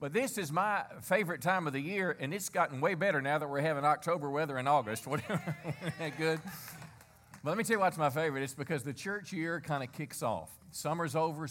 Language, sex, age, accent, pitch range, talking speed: English, male, 50-69, American, 130-170 Hz, 230 wpm